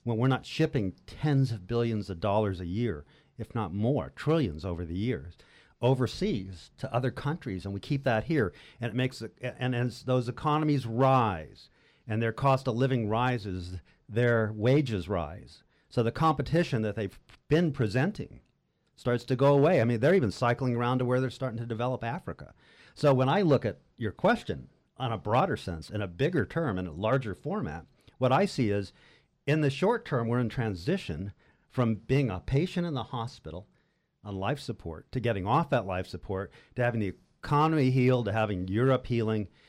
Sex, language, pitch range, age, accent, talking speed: male, English, 105-135 Hz, 50-69, American, 185 wpm